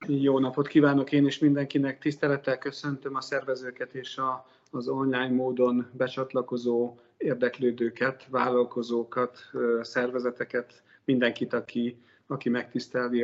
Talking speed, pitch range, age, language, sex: 100 wpm, 120-140 Hz, 40-59, Hungarian, male